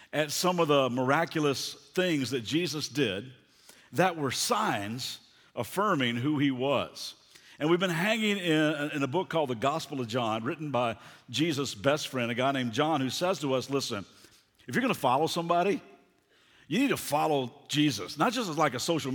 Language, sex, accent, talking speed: English, male, American, 180 wpm